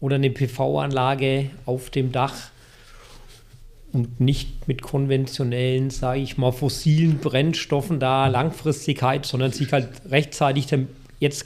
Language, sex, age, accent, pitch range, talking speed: German, male, 40-59, German, 120-150 Hz, 115 wpm